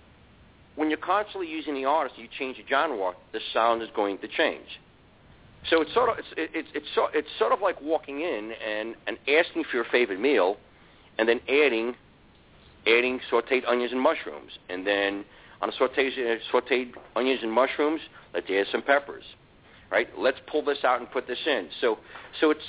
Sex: male